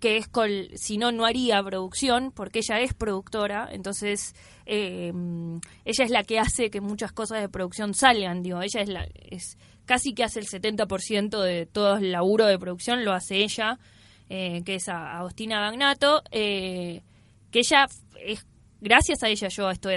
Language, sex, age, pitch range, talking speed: Spanish, female, 20-39, 190-235 Hz, 175 wpm